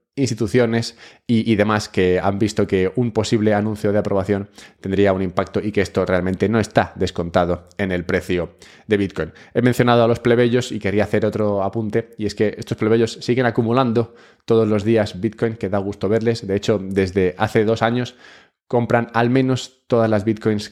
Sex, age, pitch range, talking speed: male, 20-39, 95-120 Hz, 190 wpm